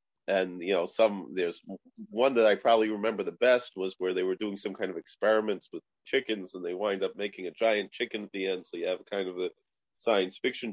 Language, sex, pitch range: English, male, 95-135 Hz